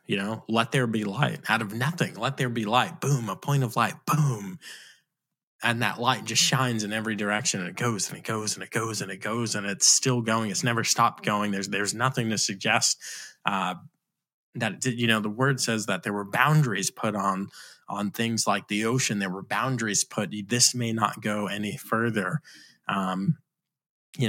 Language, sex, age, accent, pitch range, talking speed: English, male, 20-39, American, 105-130 Hz, 215 wpm